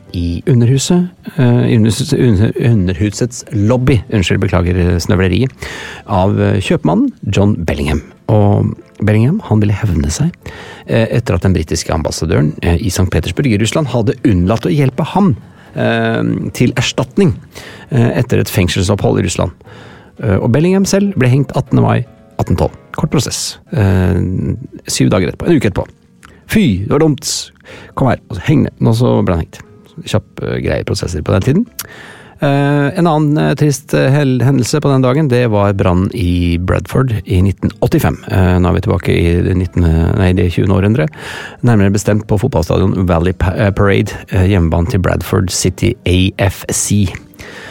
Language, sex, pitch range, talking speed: English, male, 95-125 Hz, 135 wpm